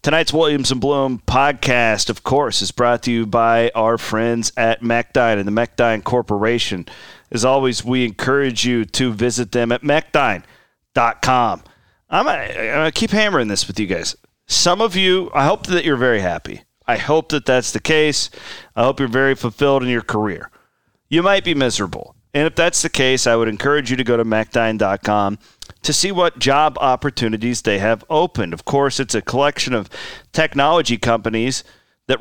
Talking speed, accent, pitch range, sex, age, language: 180 wpm, American, 115-150 Hz, male, 40-59, English